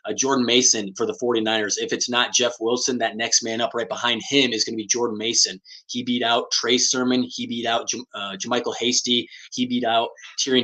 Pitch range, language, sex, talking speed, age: 110-125 Hz, English, male, 215 wpm, 20-39